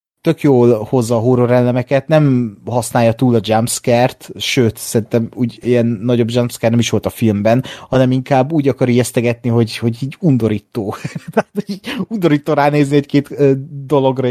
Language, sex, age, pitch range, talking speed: Hungarian, male, 30-49, 120-140 Hz, 145 wpm